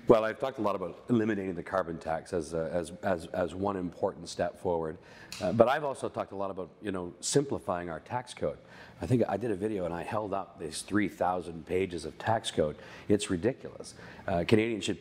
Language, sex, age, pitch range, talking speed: English, male, 40-59, 90-110 Hz, 215 wpm